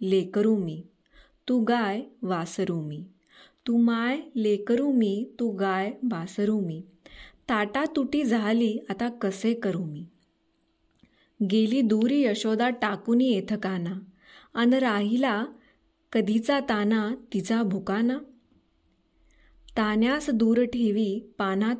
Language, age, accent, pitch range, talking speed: Marathi, 20-39, native, 195-240 Hz, 100 wpm